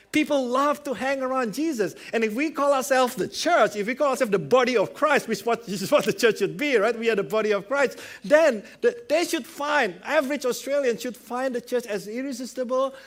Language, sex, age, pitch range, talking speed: English, male, 50-69, 200-280 Hz, 215 wpm